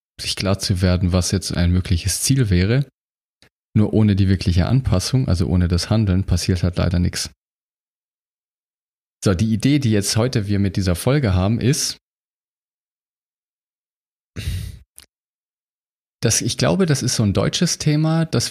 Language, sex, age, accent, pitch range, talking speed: German, male, 30-49, German, 95-120 Hz, 145 wpm